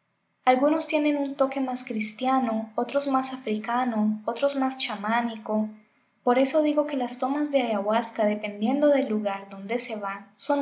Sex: female